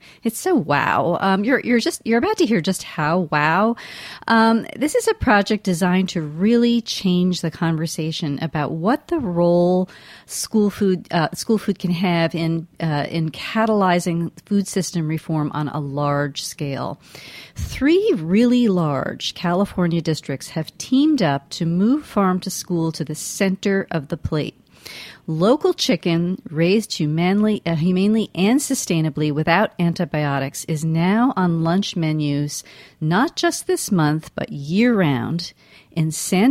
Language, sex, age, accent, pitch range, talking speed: English, female, 40-59, American, 160-210 Hz, 145 wpm